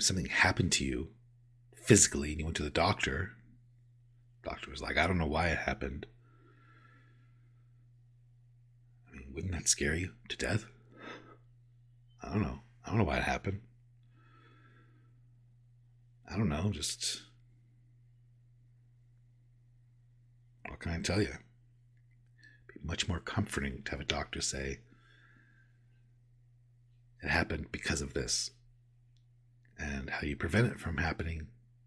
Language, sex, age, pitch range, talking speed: English, male, 60-79, 110-120 Hz, 130 wpm